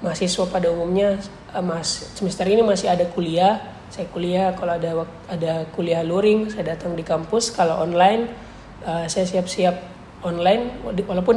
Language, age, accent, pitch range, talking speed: Indonesian, 20-39, native, 170-195 Hz, 130 wpm